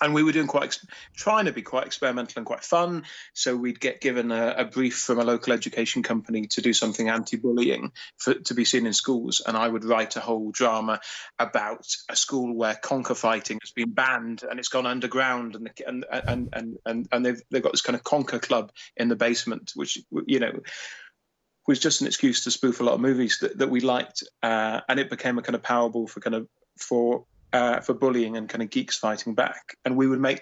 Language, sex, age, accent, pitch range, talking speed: English, male, 30-49, British, 115-135 Hz, 225 wpm